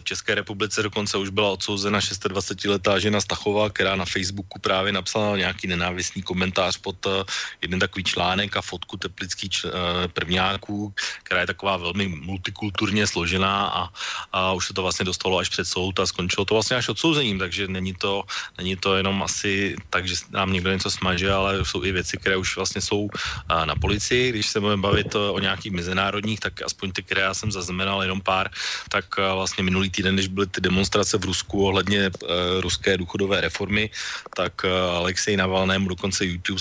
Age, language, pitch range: 30-49, Slovak, 95-105 Hz